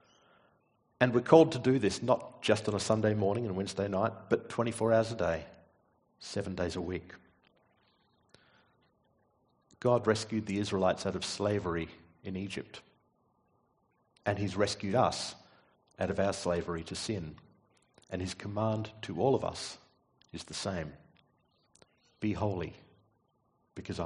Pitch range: 85-110 Hz